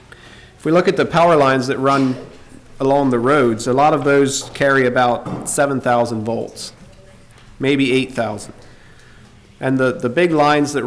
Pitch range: 120-140 Hz